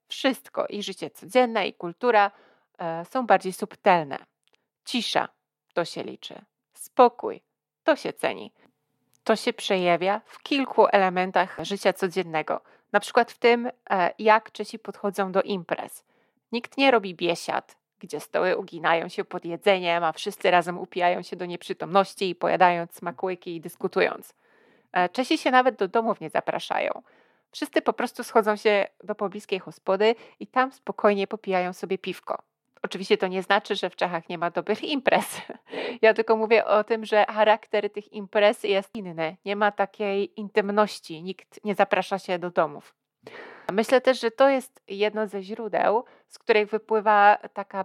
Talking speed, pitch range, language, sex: 150 wpm, 185-220 Hz, Polish, female